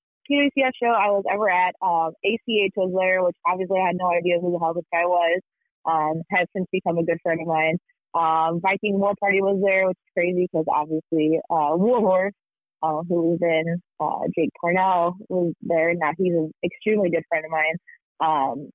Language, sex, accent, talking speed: English, female, American, 195 wpm